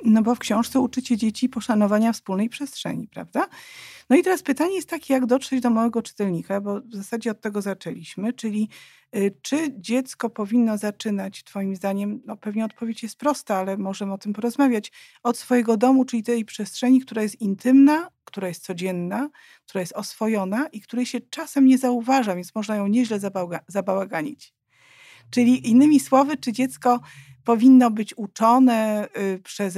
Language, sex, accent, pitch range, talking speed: Polish, female, native, 195-245 Hz, 160 wpm